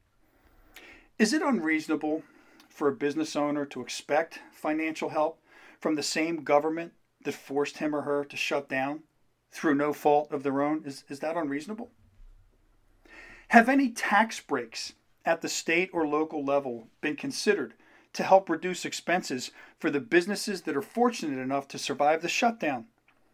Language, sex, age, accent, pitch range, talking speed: English, male, 40-59, American, 140-180 Hz, 155 wpm